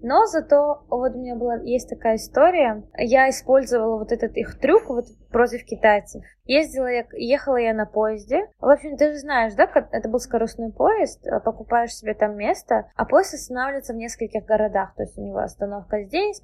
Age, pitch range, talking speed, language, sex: 20-39, 215-275 Hz, 170 wpm, Russian, female